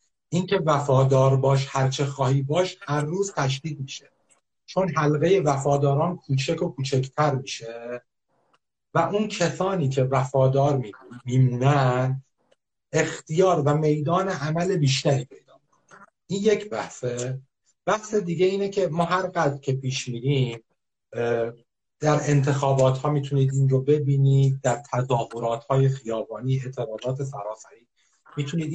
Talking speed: 115 wpm